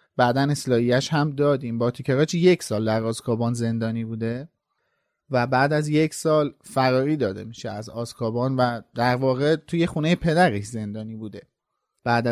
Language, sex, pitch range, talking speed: Persian, male, 125-165 Hz, 145 wpm